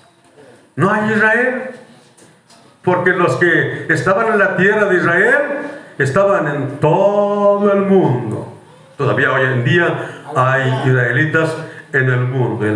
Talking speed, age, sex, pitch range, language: 125 wpm, 50-69, male, 140-200 Hz, Spanish